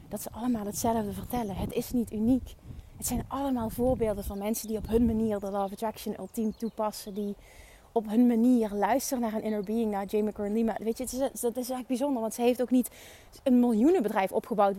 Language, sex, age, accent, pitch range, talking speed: Dutch, female, 30-49, Dutch, 205-250 Hz, 215 wpm